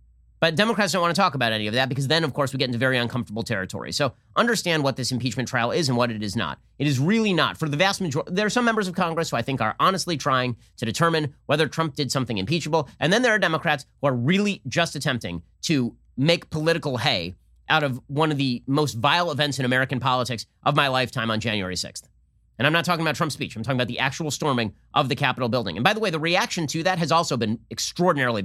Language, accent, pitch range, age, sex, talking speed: English, American, 125-160 Hz, 30-49, male, 250 wpm